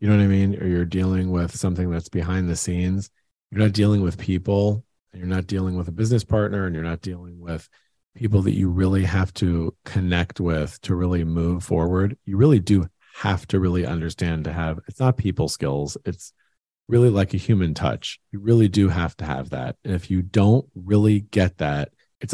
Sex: male